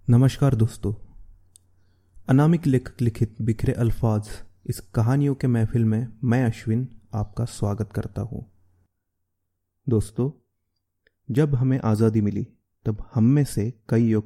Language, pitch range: Marathi, 100-125 Hz